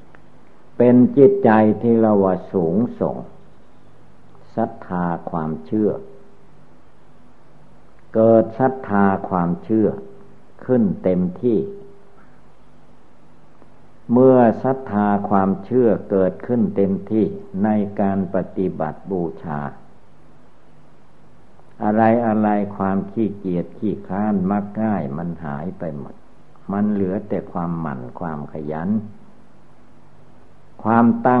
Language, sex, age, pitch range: Thai, male, 60-79, 90-110 Hz